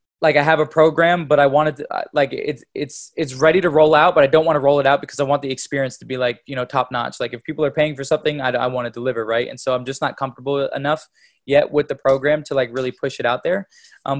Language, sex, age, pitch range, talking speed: English, male, 20-39, 125-145 Hz, 290 wpm